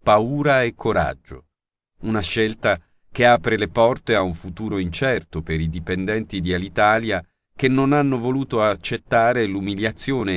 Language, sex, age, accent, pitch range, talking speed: Italian, male, 40-59, native, 90-125 Hz, 140 wpm